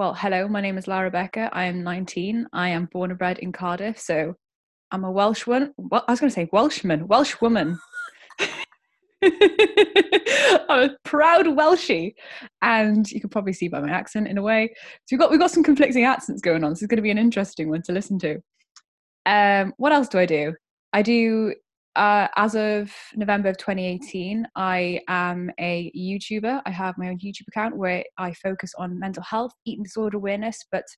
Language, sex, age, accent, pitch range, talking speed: English, female, 10-29, British, 170-220 Hz, 190 wpm